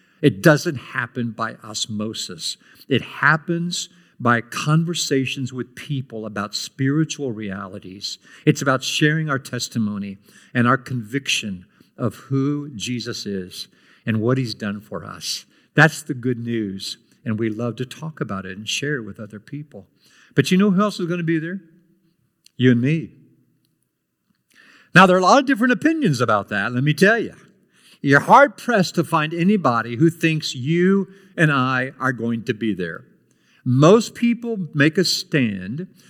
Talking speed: 160 wpm